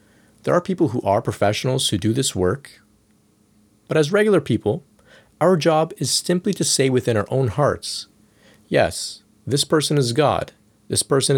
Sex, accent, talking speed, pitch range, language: male, American, 165 wpm, 105-130 Hz, English